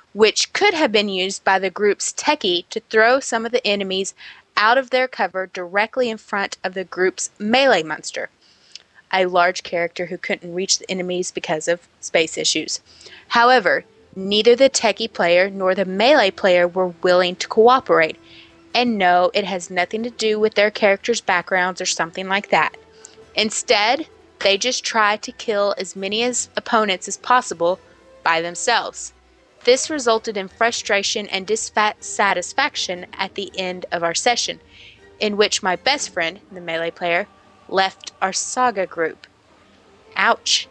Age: 20-39